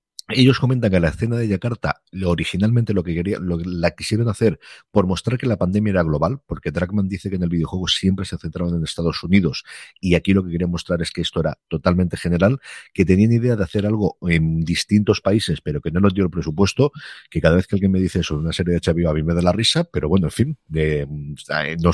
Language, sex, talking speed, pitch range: Spanish, male, 240 wpm, 80-95 Hz